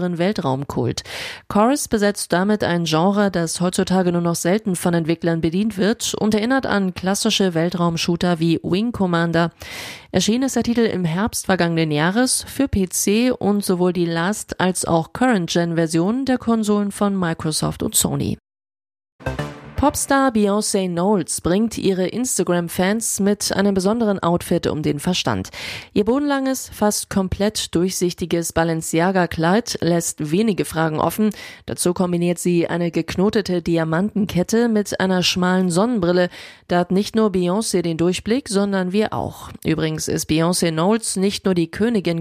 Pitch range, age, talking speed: 170-210 Hz, 30-49, 140 wpm